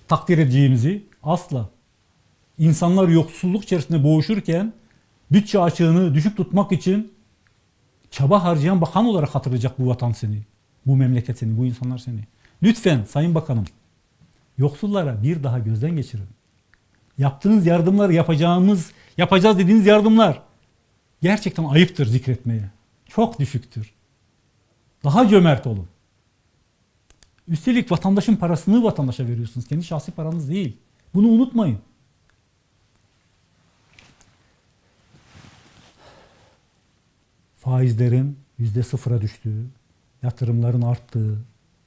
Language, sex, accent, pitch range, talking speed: Turkish, male, native, 115-165 Hz, 90 wpm